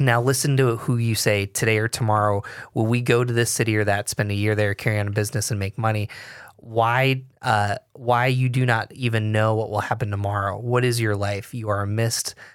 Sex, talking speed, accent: male, 230 wpm, American